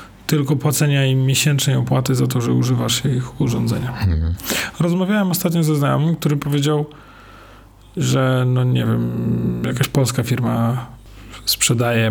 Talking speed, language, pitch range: 125 wpm, Polish, 115-155 Hz